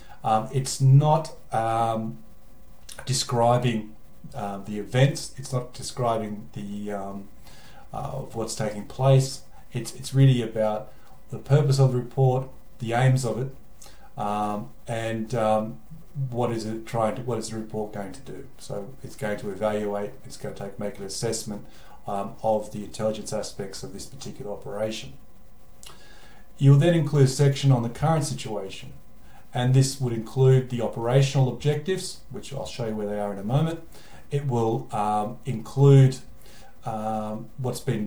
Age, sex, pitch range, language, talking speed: 40-59, male, 110-135 Hz, English, 160 wpm